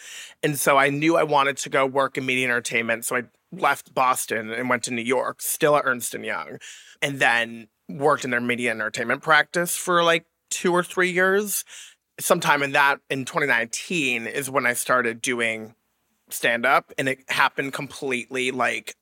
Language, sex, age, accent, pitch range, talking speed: English, male, 30-49, American, 125-150 Hz, 175 wpm